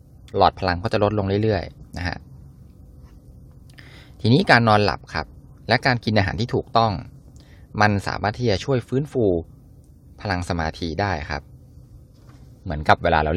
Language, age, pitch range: Thai, 20-39, 80-115 Hz